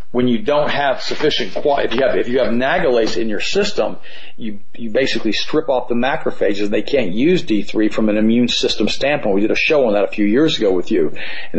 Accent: American